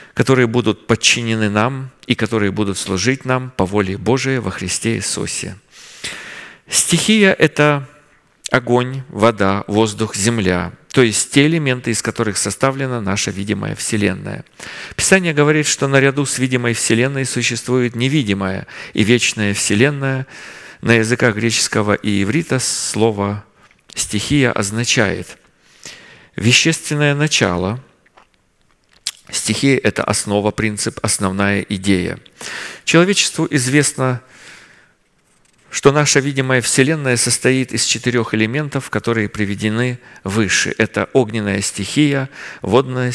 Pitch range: 105-135 Hz